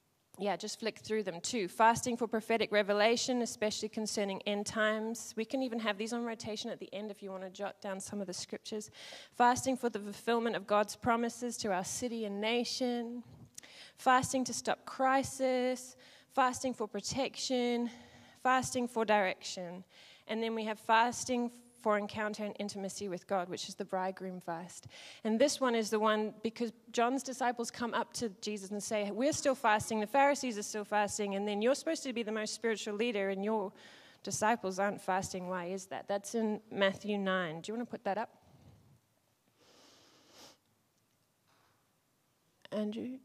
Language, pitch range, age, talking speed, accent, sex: English, 200-240 Hz, 20-39, 175 wpm, Australian, female